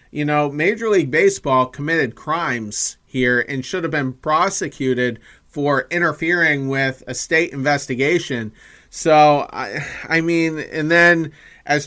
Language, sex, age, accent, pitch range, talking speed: English, male, 30-49, American, 130-155 Hz, 130 wpm